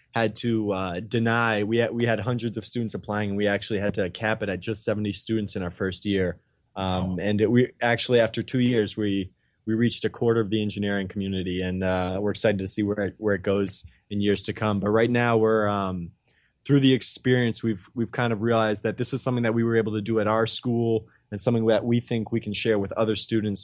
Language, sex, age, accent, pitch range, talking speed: English, male, 20-39, American, 100-115 Hz, 240 wpm